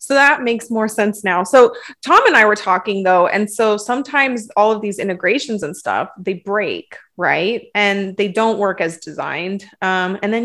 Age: 30-49